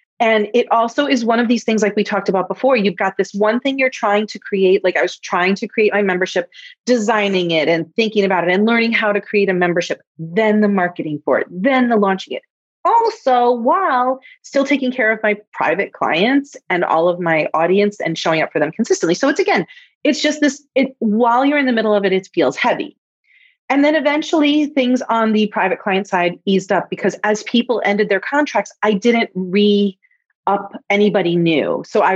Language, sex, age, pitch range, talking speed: English, female, 30-49, 185-265 Hz, 210 wpm